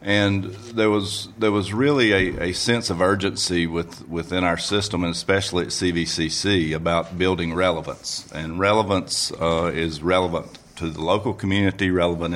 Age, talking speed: 40-59, 155 wpm